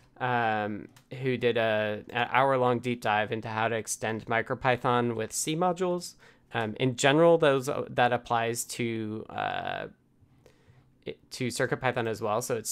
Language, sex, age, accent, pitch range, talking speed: English, male, 20-39, American, 115-140 Hz, 140 wpm